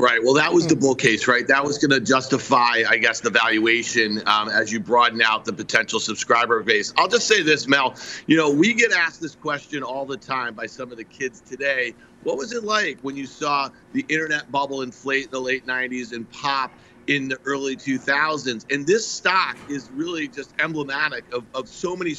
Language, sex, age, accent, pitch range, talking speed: English, male, 40-59, American, 140-225 Hz, 215 wpm